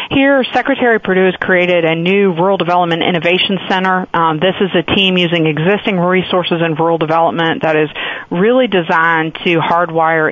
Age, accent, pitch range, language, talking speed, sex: 40-59, American, 160-185 Hz, English, 165 wpm, female